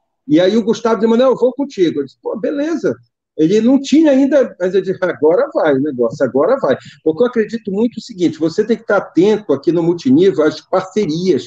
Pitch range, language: 165-235 Hz, Portuguese